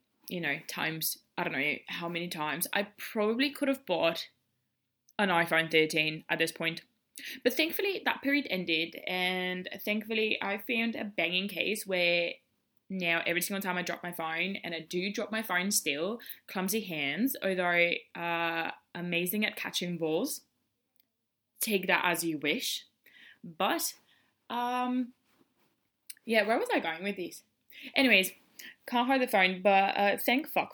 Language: English